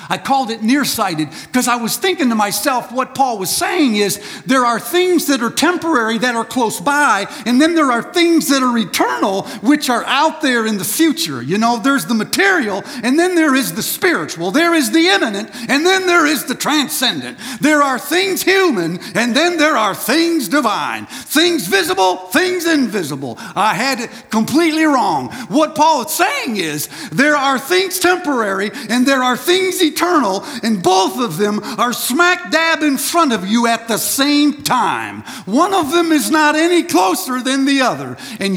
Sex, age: male, 50-69